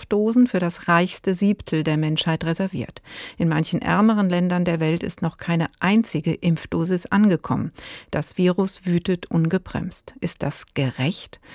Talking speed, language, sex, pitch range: 140 wpm, German, female, 170-210 Hz